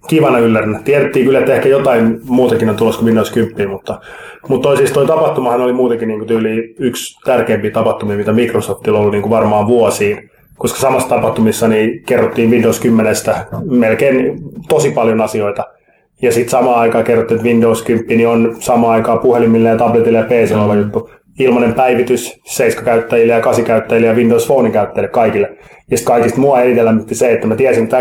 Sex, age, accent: male, 20-39, native